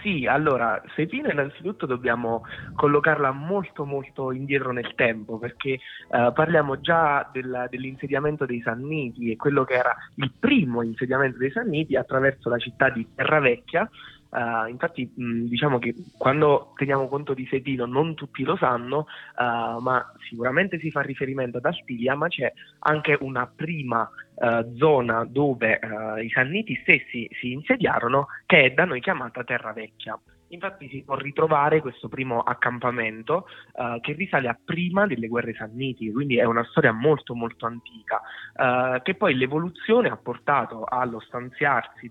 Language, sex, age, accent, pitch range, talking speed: Italian, male, 20-39, native, 120-145 Hz, 150 wpm